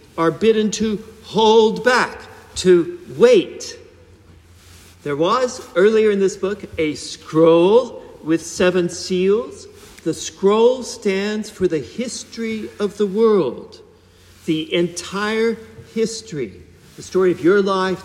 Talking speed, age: 115 wpm, 50-69